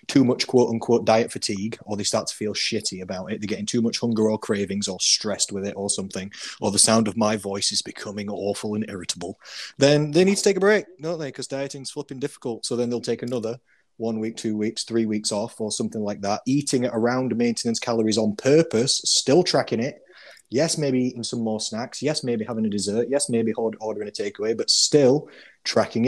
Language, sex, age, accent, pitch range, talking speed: English, male, 30-49, British, 110-130 Hz, 220 wpm